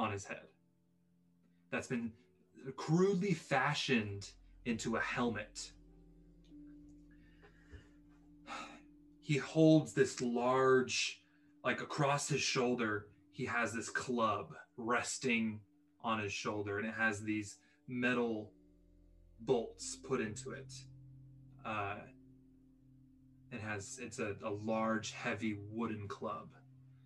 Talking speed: 100 wpm